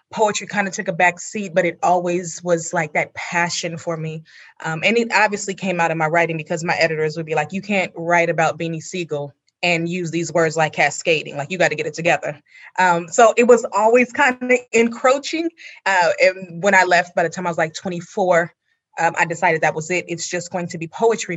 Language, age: English, 20-39